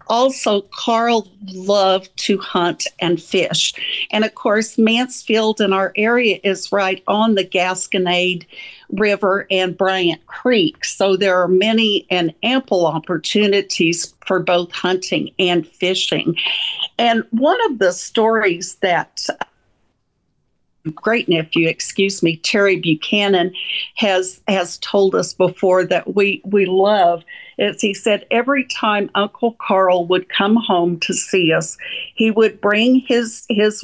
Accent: American